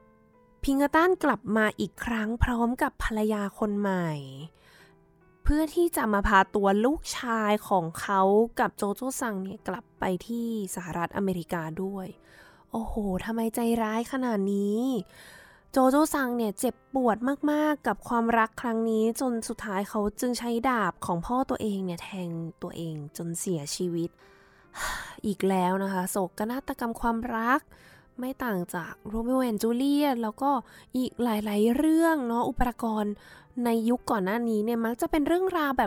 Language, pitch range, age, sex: Thai, 200-265 Hz, 20-39, female